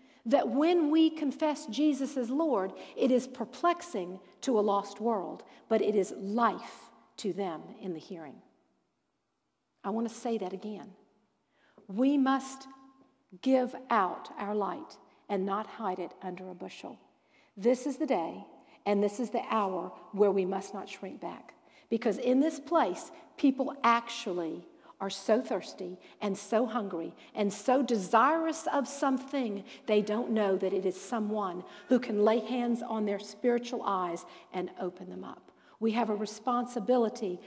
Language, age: English, 50-69